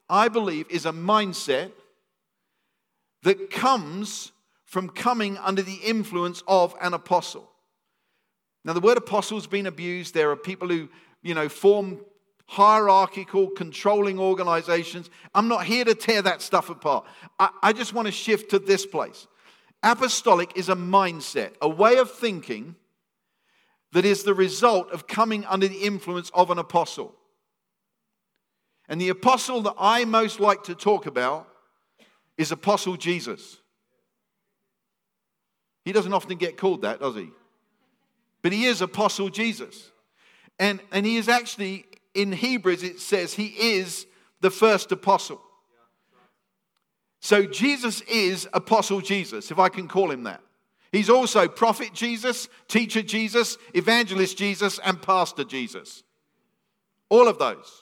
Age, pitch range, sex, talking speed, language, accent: 50-69, 185-225 Hz, male, 140 wpm, English, British